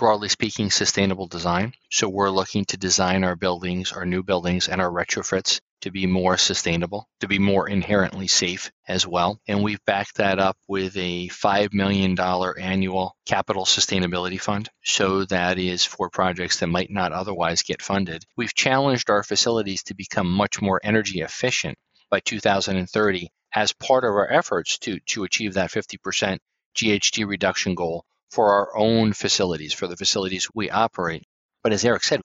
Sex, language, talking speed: male, English, 165 wpm